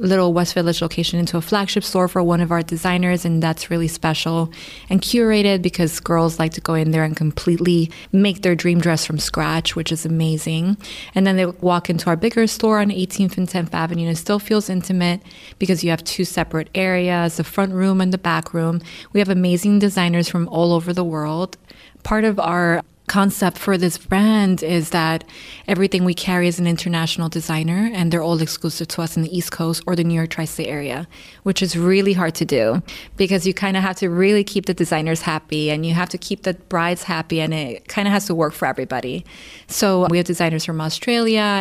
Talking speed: 215 wpm